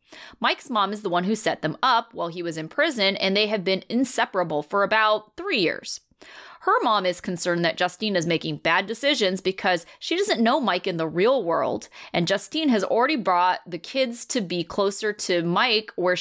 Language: English